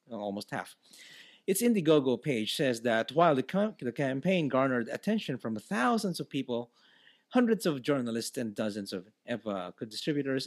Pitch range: 120-190 Hz